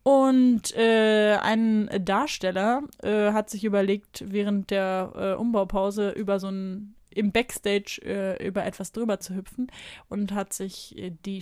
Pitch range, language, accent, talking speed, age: 205-240 Hz, German, German, 140 wpm, 20-39